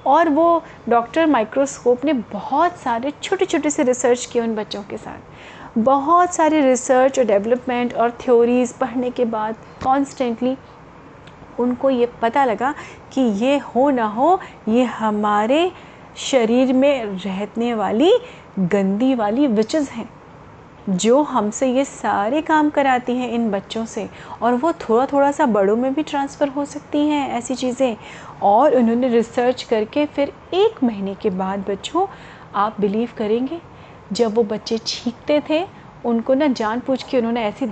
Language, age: Hindi, 30-49